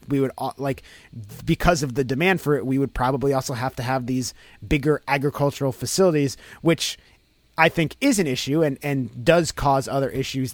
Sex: male